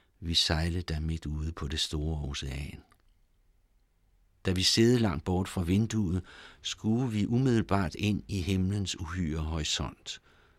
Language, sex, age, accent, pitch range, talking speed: Danish, male, 60-79, native, 85-105 Hz, 135 wpm